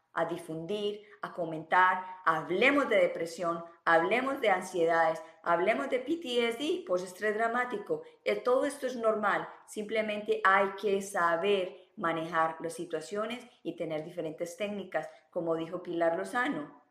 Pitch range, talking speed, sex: 165-205 Hz, 120 wpm, female